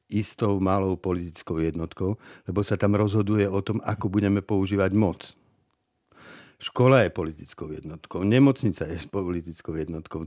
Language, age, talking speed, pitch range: Czech, 50-69, 130 wpm, 95-120 Hz